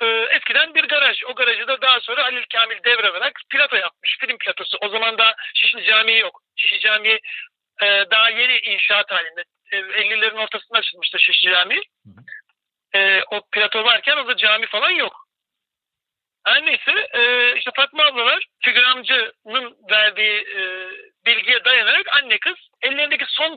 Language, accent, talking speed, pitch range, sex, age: Turkish, native, 135 wpm, 215-295 Hz, male, 60-79